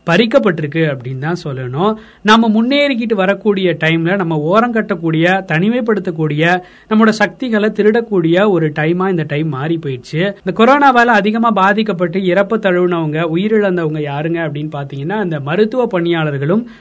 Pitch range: 165-210 Hz